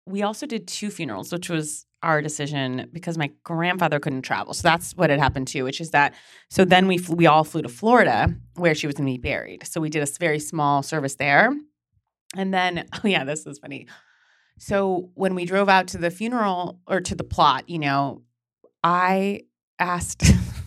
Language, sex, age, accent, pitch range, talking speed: English, female, 30-49, American, 145-200 Hz, 200 wpm